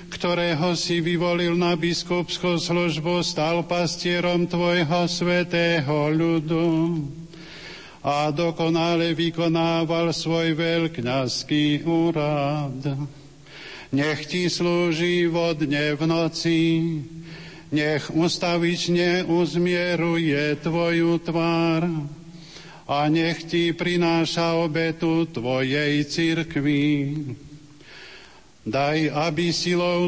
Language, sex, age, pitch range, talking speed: Slovak, male, 50-69, 160-175 Hz, 80 wpm